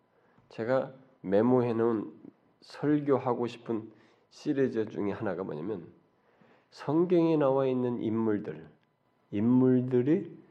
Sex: male